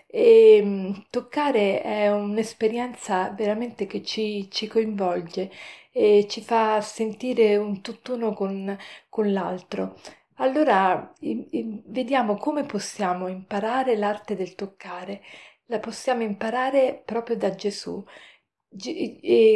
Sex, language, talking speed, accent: female, Italian, 100 wpm, native